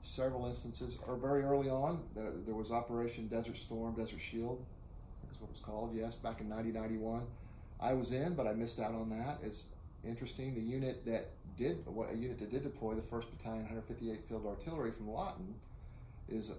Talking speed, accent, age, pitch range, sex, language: 205 wpm, American, 30-49, 105-120 Hz, male, English